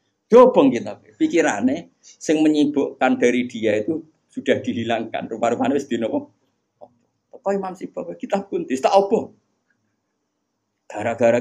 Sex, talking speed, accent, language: male, 105 wpm, native, Indonesian